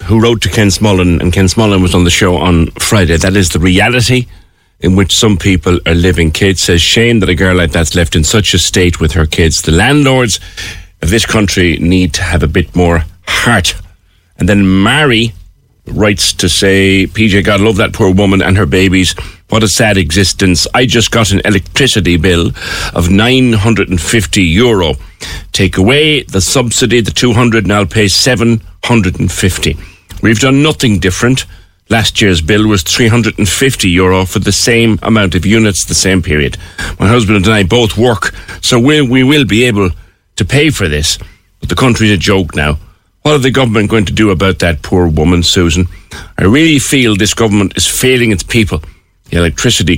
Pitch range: 85-110 Hz